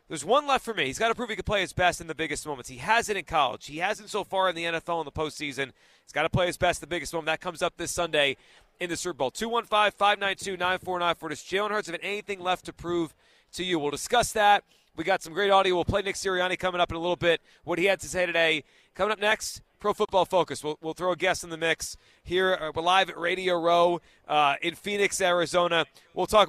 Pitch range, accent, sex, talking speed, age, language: 160-195 Hz, American, male, 270 wpm, 30-49, English